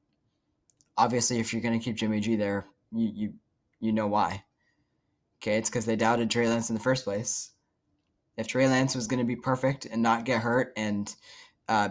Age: 10-29